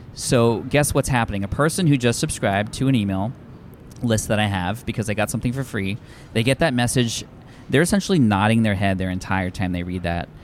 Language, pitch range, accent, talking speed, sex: English, 105-130 Hz, American, 215 wpm, male